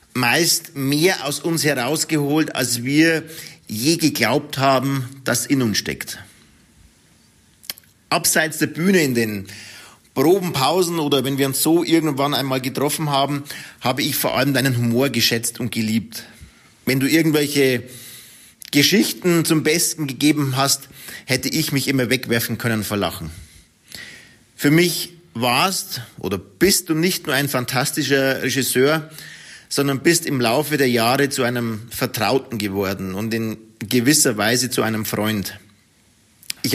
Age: 40-59